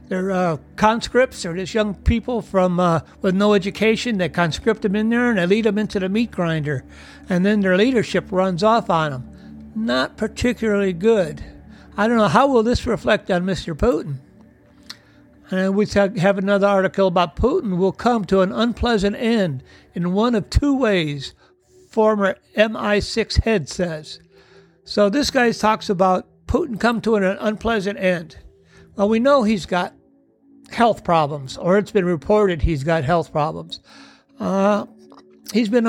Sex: male